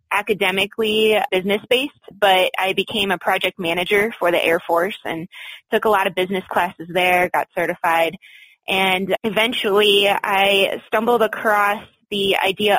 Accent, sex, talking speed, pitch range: American, female, 140 wpm, 185-220 Hz